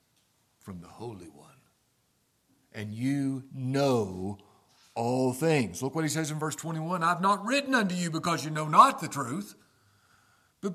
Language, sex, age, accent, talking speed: English, male, 50-69, American, 155 wpm